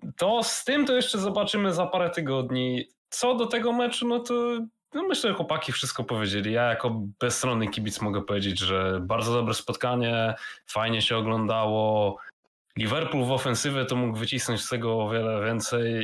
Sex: male